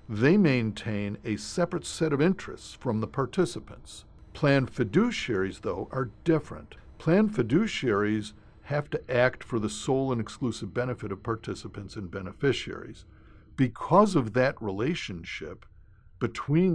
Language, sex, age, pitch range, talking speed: English, male, 60-79, 105-145 Hz, 125 wpm